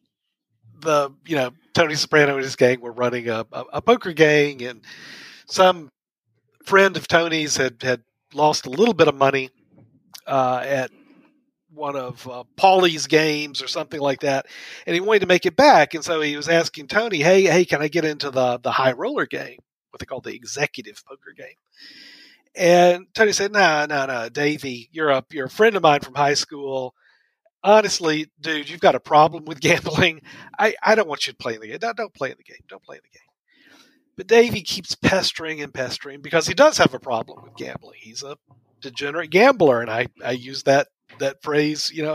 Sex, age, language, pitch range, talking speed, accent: male, 50-69, English, 135-175 Hz, 205 wpm, American